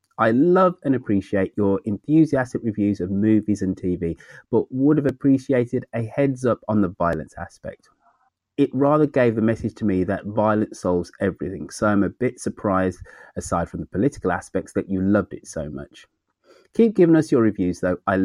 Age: 30-49